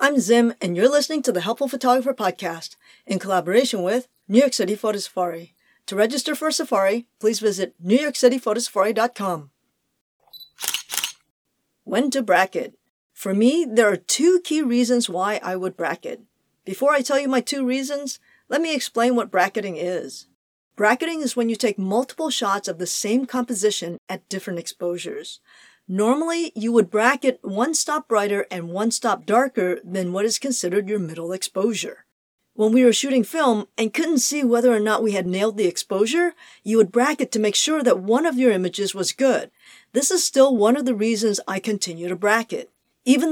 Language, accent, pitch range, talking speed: English, American, 195-260 Hz, 175 wpm